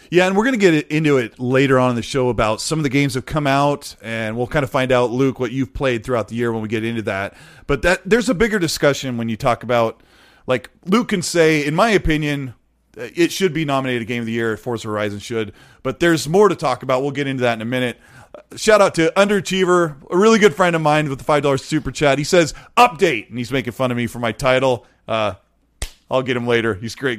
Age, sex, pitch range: 30-49, male, 120-160 Hz